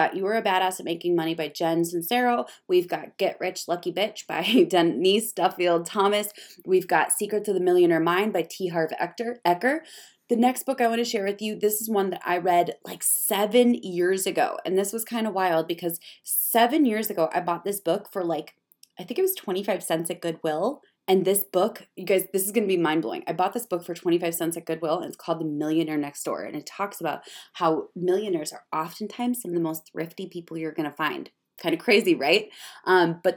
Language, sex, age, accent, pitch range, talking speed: English, female, 20-39, American, 170-220 Hz, 225 wpm